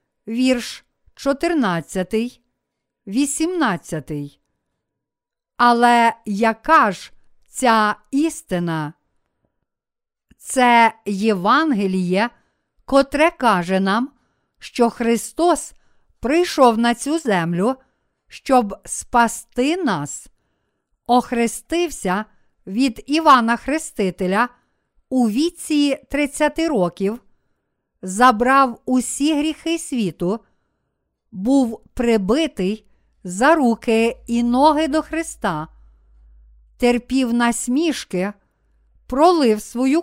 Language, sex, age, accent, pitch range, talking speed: Ukrainian, female, 50-69, native, 210-285 Hz, 70 wpm